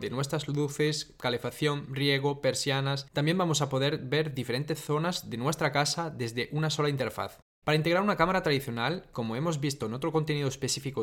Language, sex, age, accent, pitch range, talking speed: Spanish, male, 20-39, Spanish, 130-160 Hz, 175 wpm